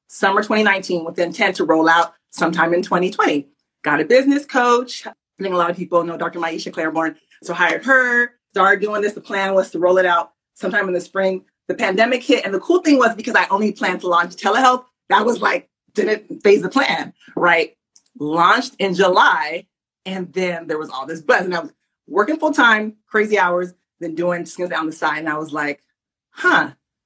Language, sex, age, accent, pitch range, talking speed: English, female, 30-49, American, 175-240 Hz, 210 wpm